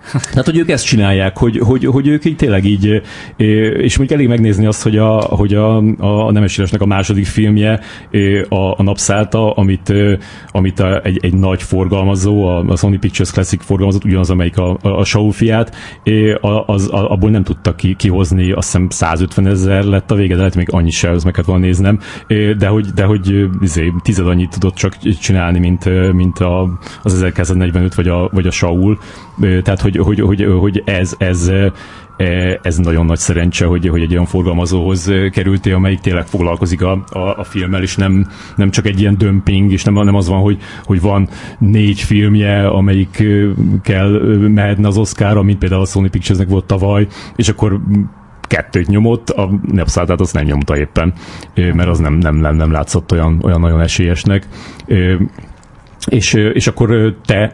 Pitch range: 90-105 Hz